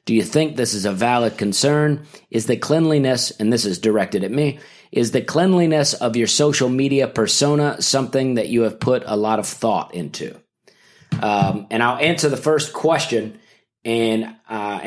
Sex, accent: male, American